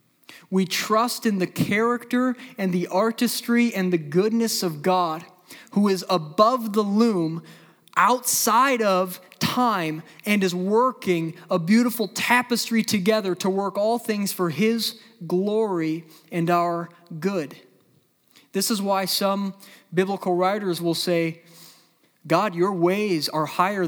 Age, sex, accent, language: 20-39, male, American, English